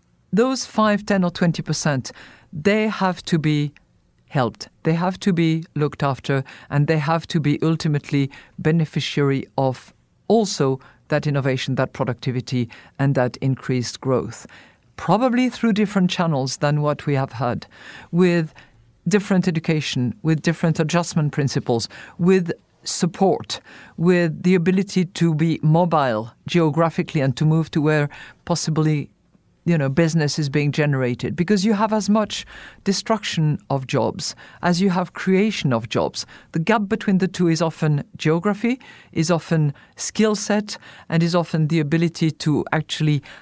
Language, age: English, 50-69